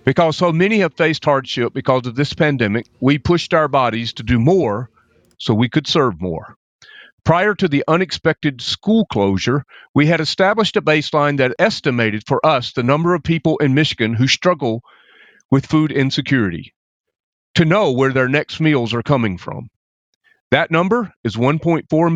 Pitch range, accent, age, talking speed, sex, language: 125-165 Hz, American, 40-59, 165 wpm, male, English